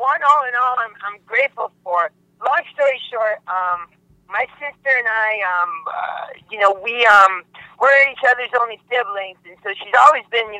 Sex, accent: male, American